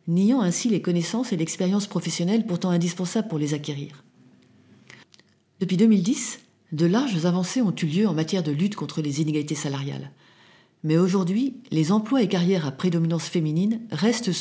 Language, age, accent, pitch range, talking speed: French, 40-59, French, 150-195 Hz, 160 wpm